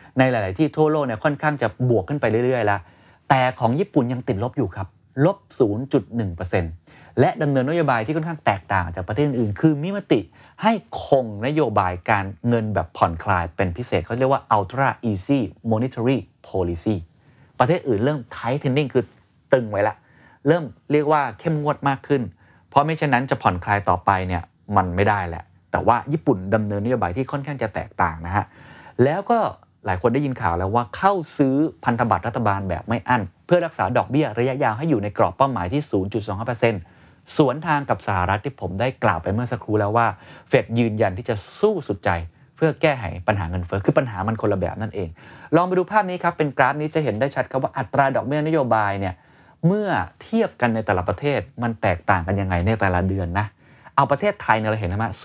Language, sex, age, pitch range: Thai, male, 30-49, 100-140 Hz